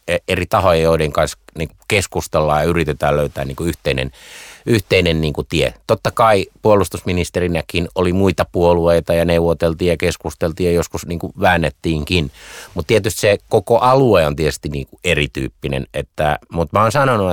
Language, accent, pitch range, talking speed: Finnish, native, 75-95 Hz, 125 wpm